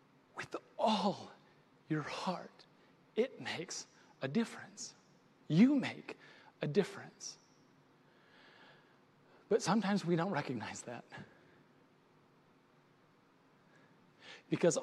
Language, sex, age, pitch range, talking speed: English, male, 40-59, 165-245 Hz, 75 wpm